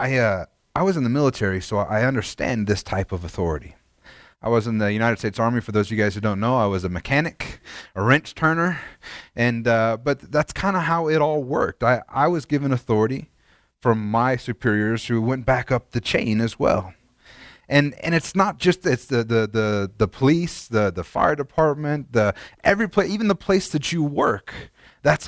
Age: 30-49